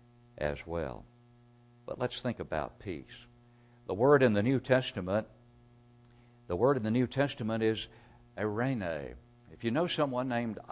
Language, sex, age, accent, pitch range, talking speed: English, male, 60-79, American, 105-125 Hz, 145 wpm